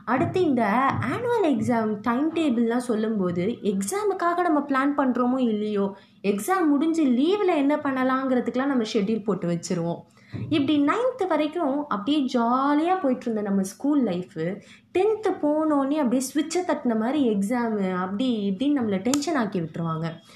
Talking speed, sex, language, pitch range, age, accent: 125 wpm, female, Tamil, 205-290 Hz, 20-39, native